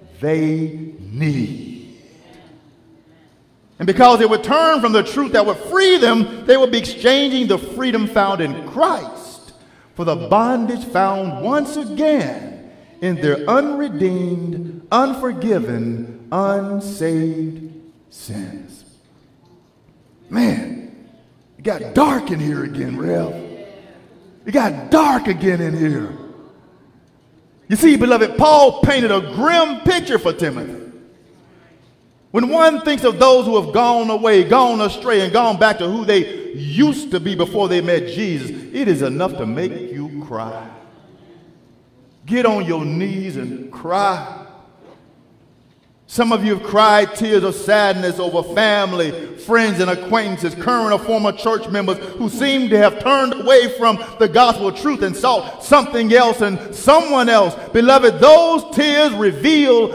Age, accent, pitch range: 40-59, American, 175-250 Hz